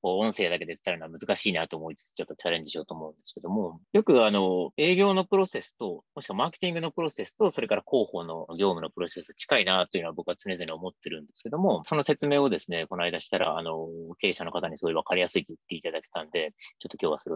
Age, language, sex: 30-49, Japanese, male